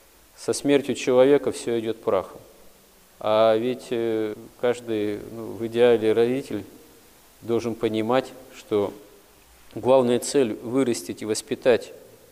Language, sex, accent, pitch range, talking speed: Russian, male, native, 110-130 Hz, 100 wpm